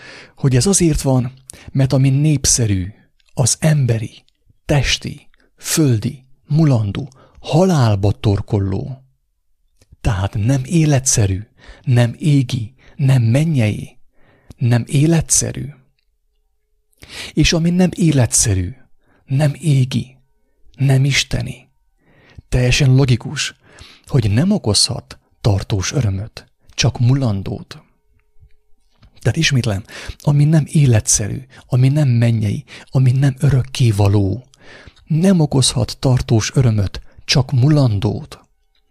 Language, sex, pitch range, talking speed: English, male, 105-140 Hz, 90 wpm